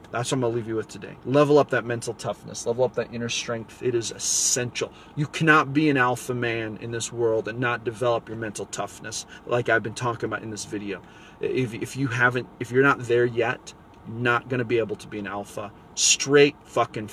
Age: 30-49